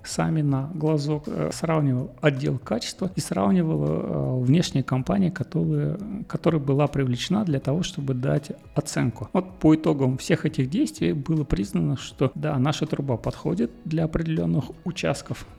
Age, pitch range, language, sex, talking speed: 40-59, 130-165 Hz, Russian, male, 130 wpm